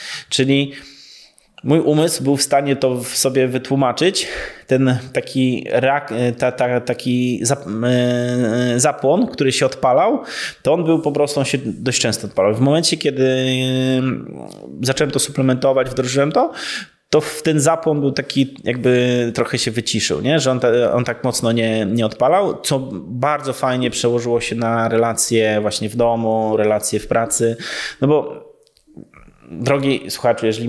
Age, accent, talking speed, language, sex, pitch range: 20-39, native, 150 wpm, Polish, male, 110-130 Hz